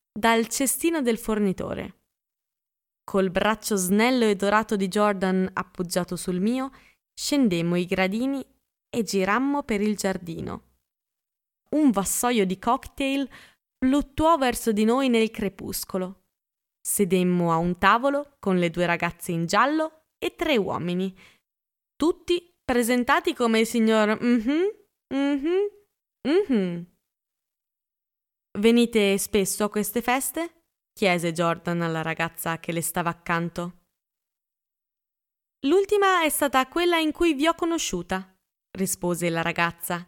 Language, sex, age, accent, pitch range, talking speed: Italian, female, 20-39, native, 185-285 Hz, 120 wpm